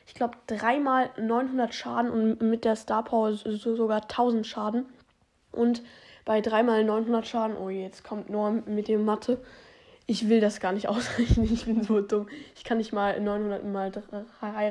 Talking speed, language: 170 wpm, German